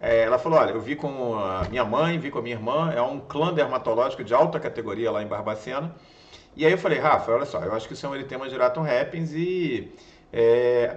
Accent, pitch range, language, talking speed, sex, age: Brazilian, 135-200 Hz, Portuguese, 235 wpm, male, 40-59